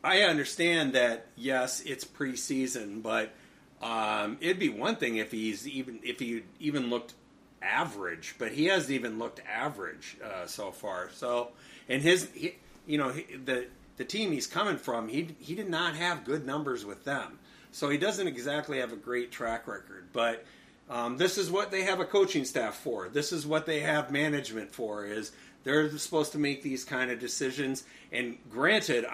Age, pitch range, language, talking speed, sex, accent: 30-49, 120-155 Hz, English, 185 wpm, male, American